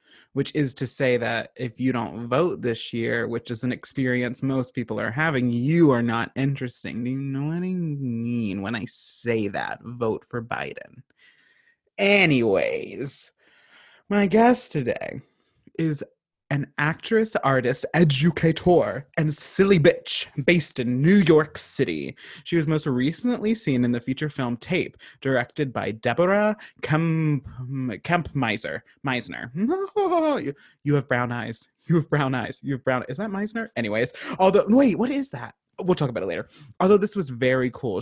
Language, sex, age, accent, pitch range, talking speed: English, male, 20-39, American, 125-180 Hz, 155 wpm